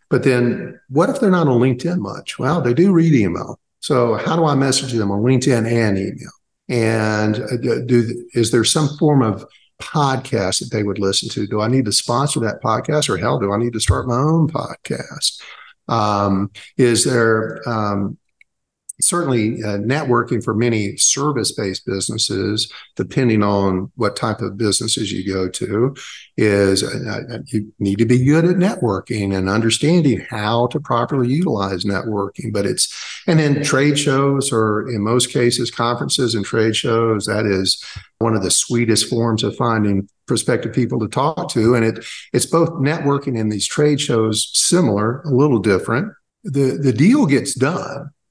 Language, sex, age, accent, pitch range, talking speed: English, male, 50-69, American, 105-140 Hz, 170 wpm